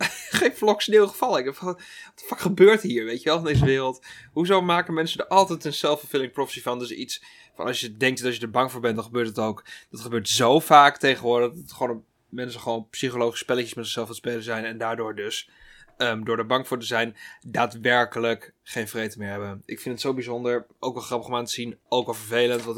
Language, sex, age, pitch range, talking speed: Dutch, male, 20-39, 115-135 Hz, 230 wpm